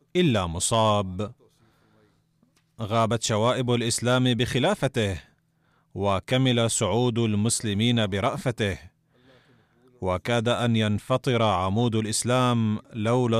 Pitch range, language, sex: 105-125 Hz, Arabic, male